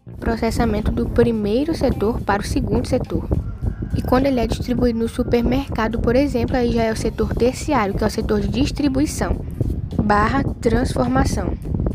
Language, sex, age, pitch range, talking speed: Portuguese, female, 10-29, 195-260 Hz, 155 wpm